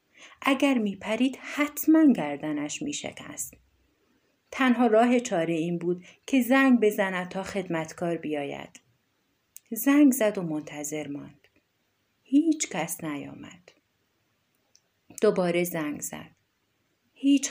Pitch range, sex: 165-235 Hz, female